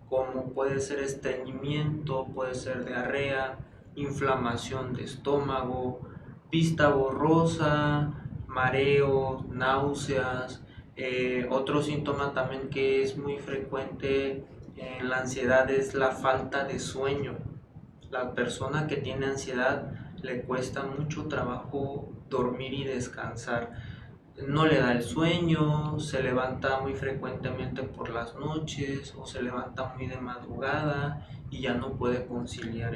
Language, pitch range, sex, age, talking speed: Spanish, 125-145 Hz, male, 20-39, 120 wpm